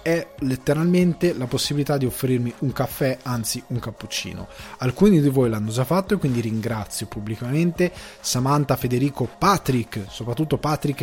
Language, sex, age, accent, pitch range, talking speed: Italian, male, 20-39, native, 115-150 Hz, 140 wpm